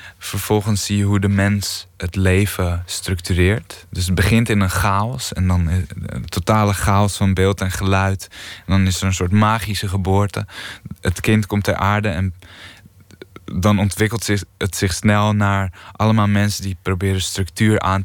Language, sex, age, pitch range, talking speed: Dutch, male, 20-39, 90-100 Hz, 165 wpm